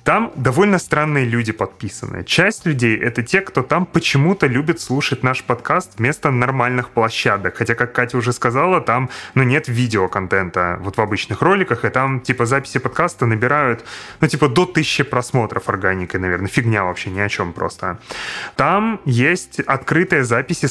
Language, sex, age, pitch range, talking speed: Russian, male, 30-49, 110-155 Hz, 160 wpm